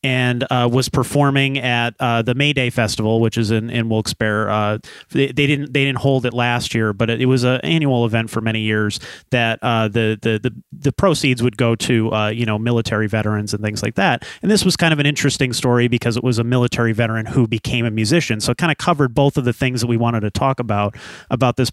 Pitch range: 115-150 Hz